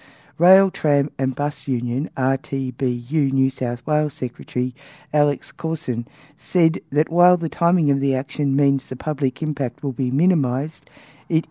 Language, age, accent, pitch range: English, 60-79, Australian, 130-150 Hz